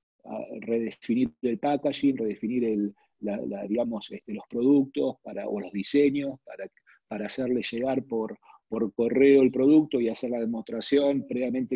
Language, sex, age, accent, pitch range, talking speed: Spanish, male, 40-59, Argentinian, 125-170 Hz, 150 wpm